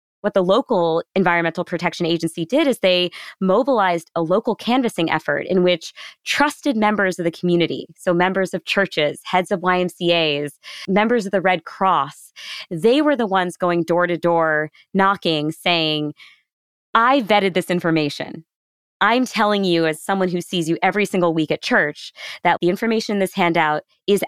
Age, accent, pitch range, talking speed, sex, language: 20-39, American, 170-215 Hz, 165 wpm, female, English